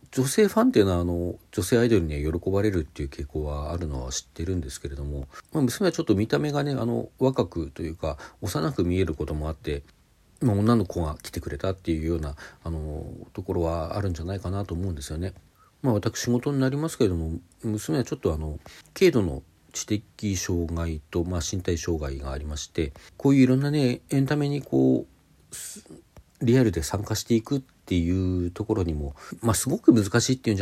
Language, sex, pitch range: Japanese, male, 80-105 Hz